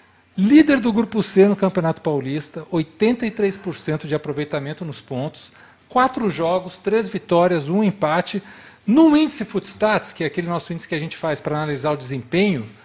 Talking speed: 160 wpm